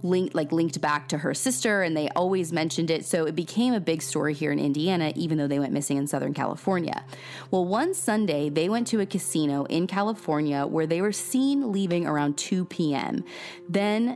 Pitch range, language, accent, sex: 155-210 Hz, English, American, female